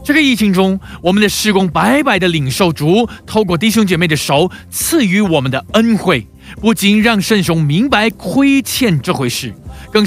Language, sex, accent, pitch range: Chinese, male, native, 160-225 Hz